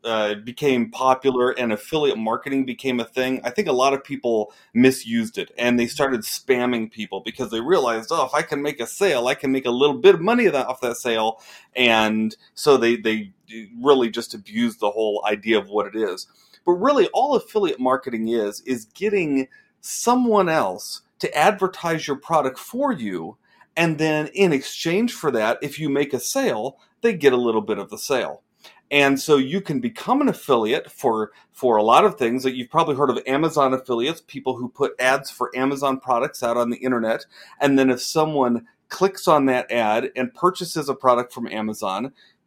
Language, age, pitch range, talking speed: English, 30-49, 120-160 Hz, 195 wpm